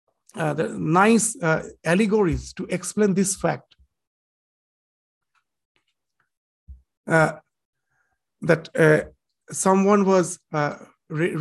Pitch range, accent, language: 170-205 Hz, Indian, English